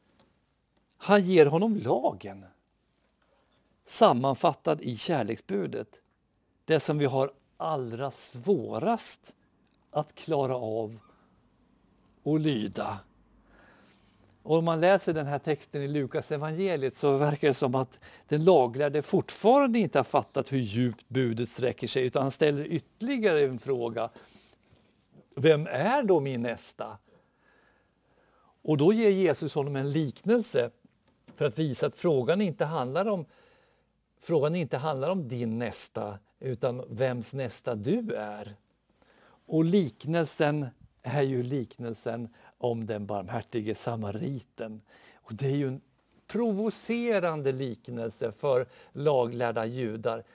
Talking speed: 115 wpm